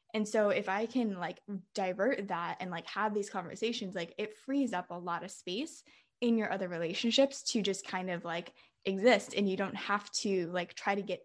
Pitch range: 180-215 Hz